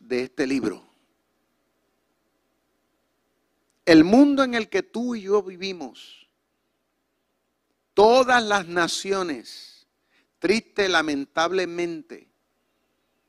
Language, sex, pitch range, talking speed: Spanish, male, 165-225 Hz, 75 wpm